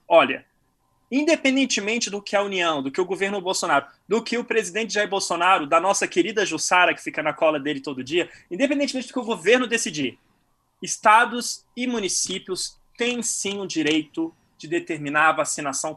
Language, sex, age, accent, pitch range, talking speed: Portuguese, male, 20-39, Brazilian, 165-220 Hz, 170 wpm